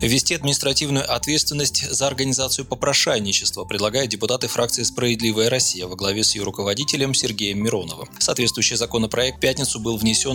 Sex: male